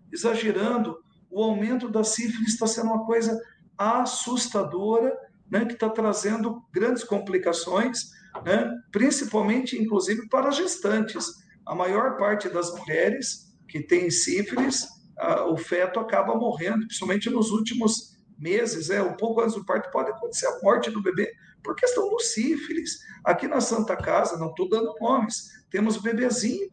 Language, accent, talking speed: Portuguese, Brazilian, 145 wpm